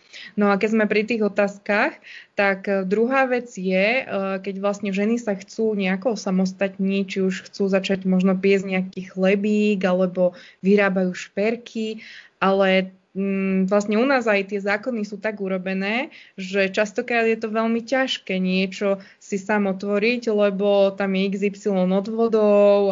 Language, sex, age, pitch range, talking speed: Slovak, female, 20-39, 195-215 Hz, 140 wpm